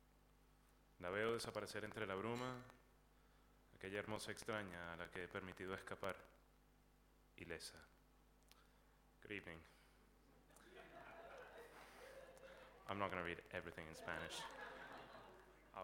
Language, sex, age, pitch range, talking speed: English, male, 20-39, 85-105 Hz, 100 wpm